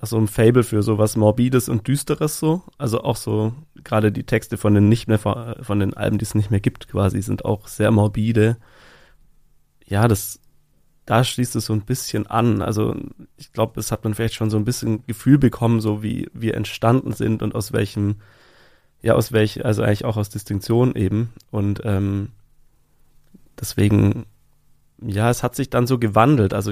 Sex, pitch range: male, 105-120 Hz